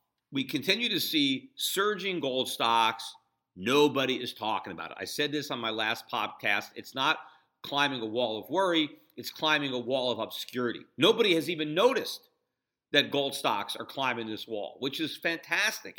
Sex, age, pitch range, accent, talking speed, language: male, 50-69, 120-160 Hz, American, 175 wpm, English